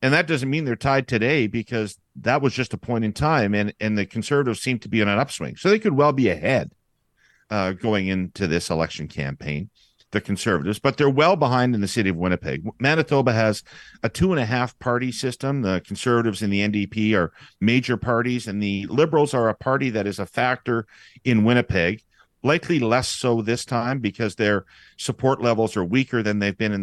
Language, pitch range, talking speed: English, 100-130 Hz, 205 wpm